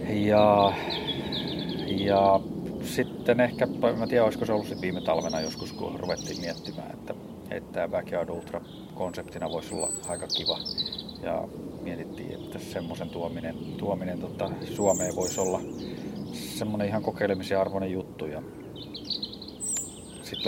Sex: male